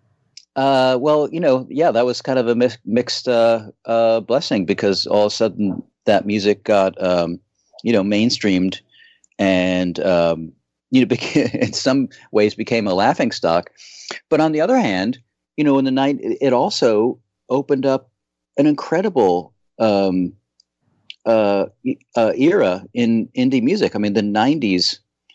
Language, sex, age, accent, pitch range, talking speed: English, male, 40-59, American, 95-130 Hz, 155 wpm